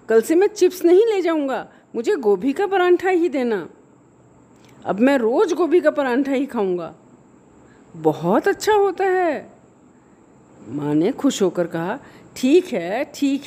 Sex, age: female, 50-69